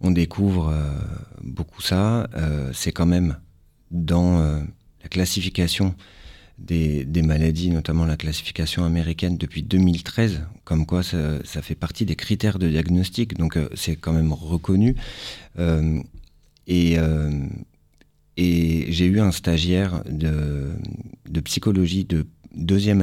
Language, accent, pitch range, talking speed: French, French, 80-95 Hz, 135 wpm